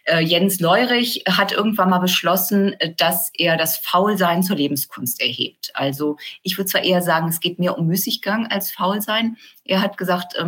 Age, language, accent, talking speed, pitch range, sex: 30-49, German, German, 165 wpm, 150-185 Hz, female